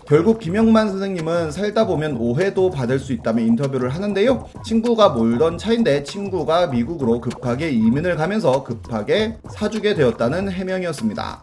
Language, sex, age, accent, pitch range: Korean, male, 30-49, native, 120-205 Hz